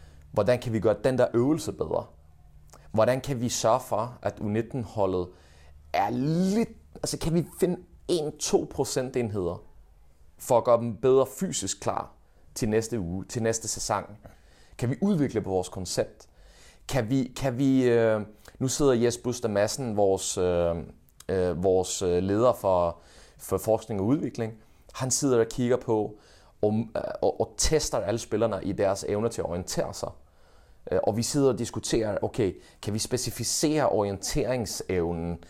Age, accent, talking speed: 30-49, native, 150 wpm